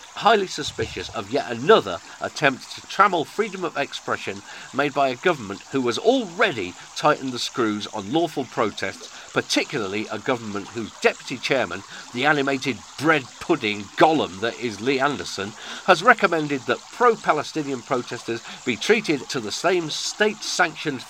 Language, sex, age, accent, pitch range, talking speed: English, male, 40-59, British, 115-165 Hz, 140 wpm